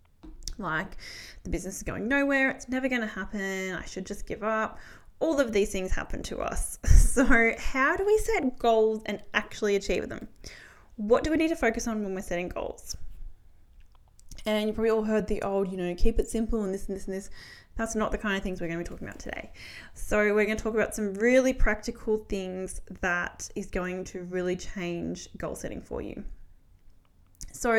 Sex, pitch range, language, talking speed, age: female, 185-230 Hz, English, 205 wpm, 10-29